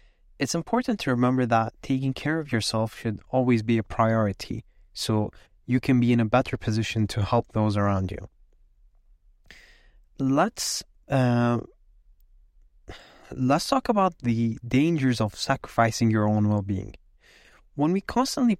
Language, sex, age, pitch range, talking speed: English, male, 20-39, 110-145 Hz, 135 wpm